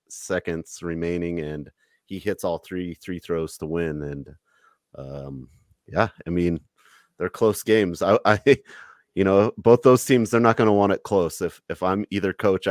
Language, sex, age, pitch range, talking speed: English, male, 30-49, 80-105 Hz, 180 wpm